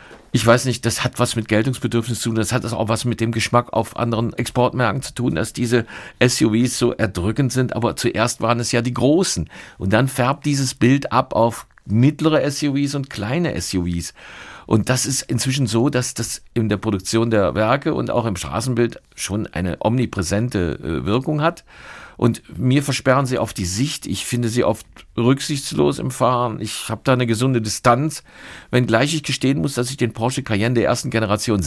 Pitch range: 110-130 Hz